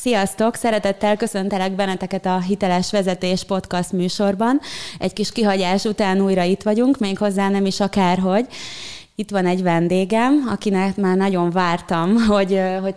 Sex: female